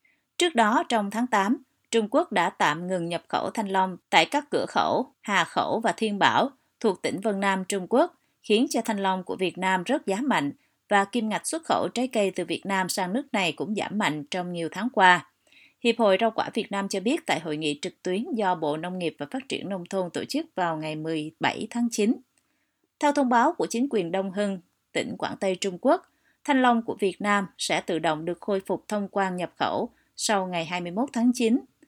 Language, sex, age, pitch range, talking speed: Vietnamese, female, 20-39, 185-235 Hz, 230 wpm